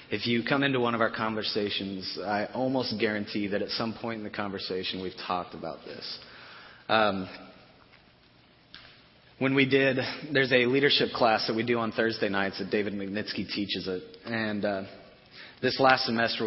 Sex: male